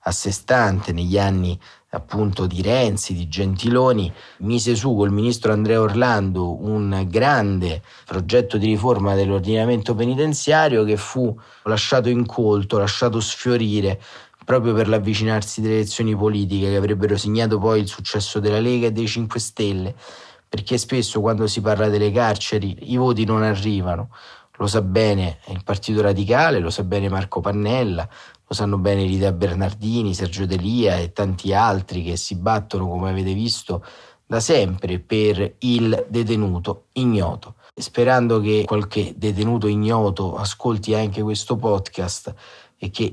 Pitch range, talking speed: 100-115 Hz, 140 wpm